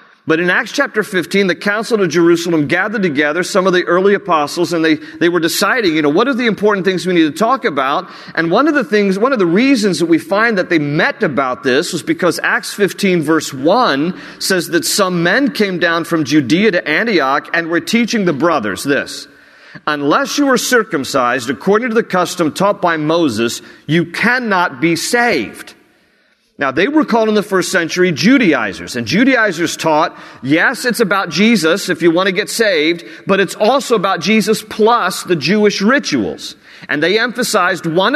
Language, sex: English, male